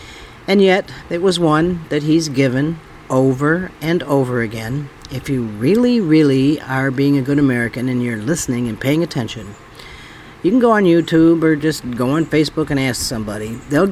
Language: English